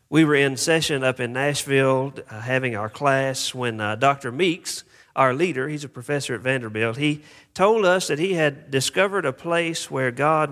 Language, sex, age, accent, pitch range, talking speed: English, male, 40-59, American, 125-160 Hz, 190 wpm